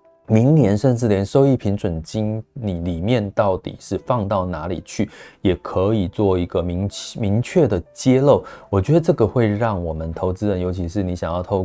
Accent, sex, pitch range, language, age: native, male, 90-120 Hz, Chinese, 20-39